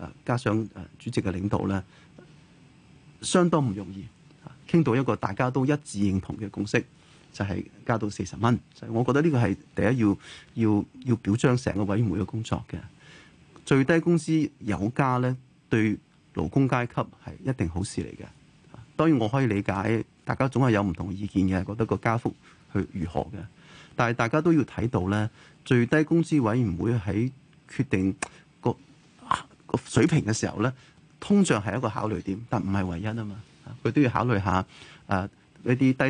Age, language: 30-49, Chinese